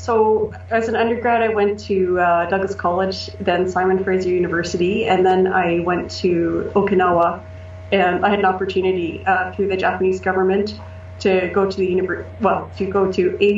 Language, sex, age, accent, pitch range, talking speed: English, female, 30-49, American, 175-195 Hz, 170 wpm